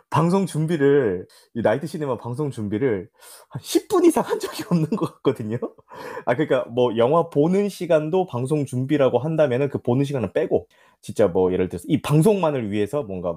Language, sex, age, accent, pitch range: Korean, male, 20-39, native, 100-165 Hz